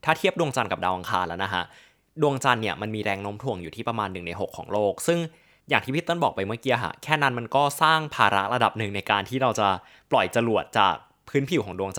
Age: 20-39